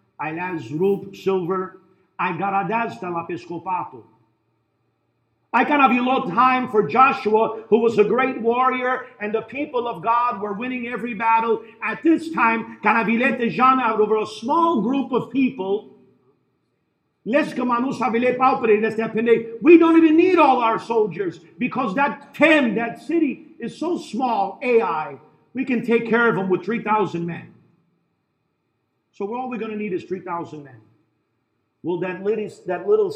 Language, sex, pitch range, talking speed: English, male, 180-245 Hz, 145 wpm